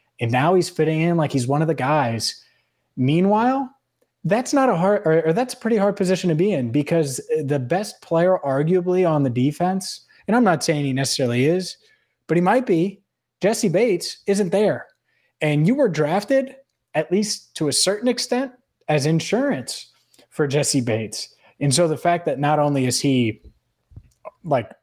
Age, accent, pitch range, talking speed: 20-39, American, 120-165 Hz, 175 wpm